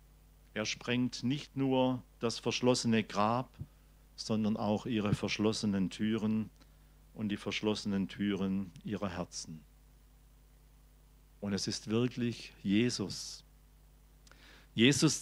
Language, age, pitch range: German, 50-69, 105-145 Hz